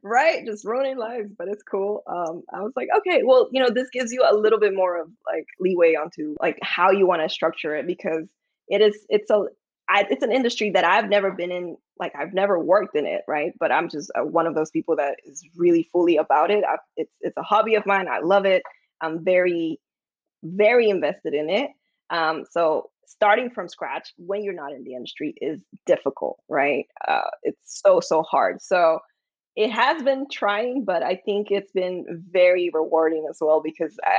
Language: English